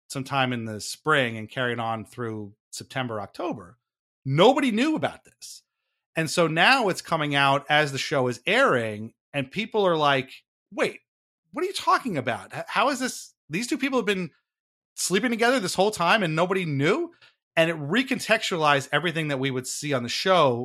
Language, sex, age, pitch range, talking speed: English, male, 30-49, 120-170 Hz, 180 wpm